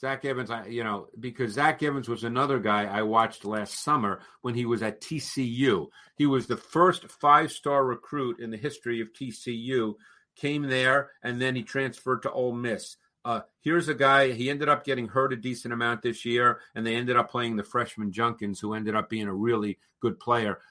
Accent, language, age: American, English, 50-69